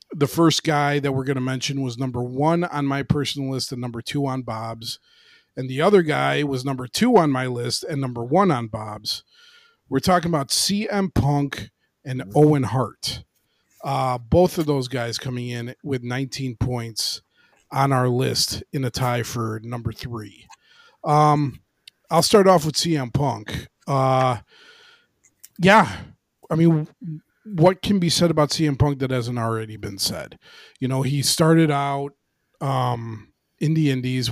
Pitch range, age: 125-155 Hz, 30-49